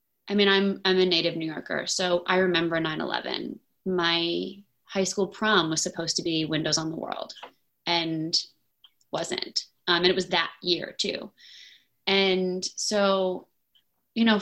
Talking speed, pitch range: 155 wpm, 175-210 Hz